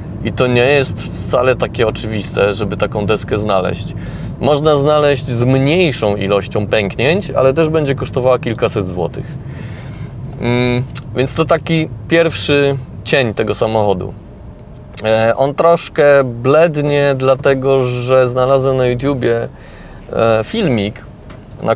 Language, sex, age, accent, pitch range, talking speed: Polish, male, 30-49, native, 115-135 Hz, 110 wpm